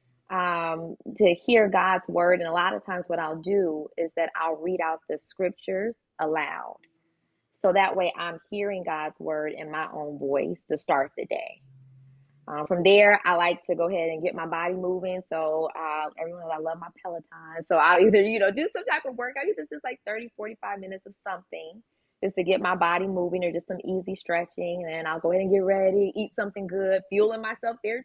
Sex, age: female, 20-39